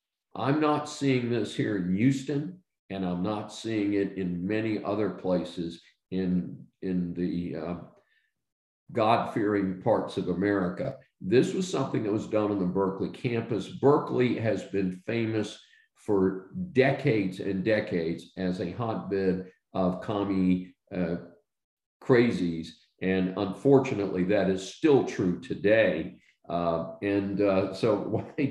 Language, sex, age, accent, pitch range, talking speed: English, male, 50-69, American, 95-135 Hz, 130 wpm